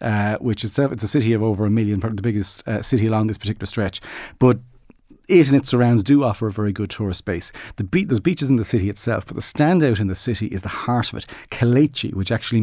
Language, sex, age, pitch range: English, male, 40-59, 105-125 Hz